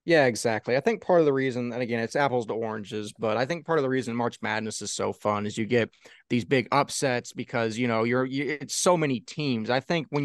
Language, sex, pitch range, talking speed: English, male, 115-150 Hz, 260 wpm